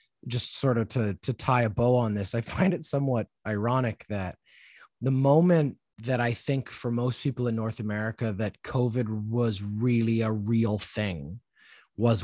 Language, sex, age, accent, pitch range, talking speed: English, male, 30-49, American, 110-130 Hz, 170 wpm